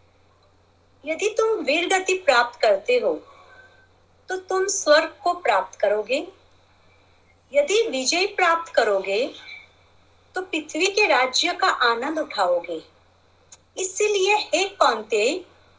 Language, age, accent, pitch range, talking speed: Hindi, 50-69, native, 260-355 Hz, 100 wpm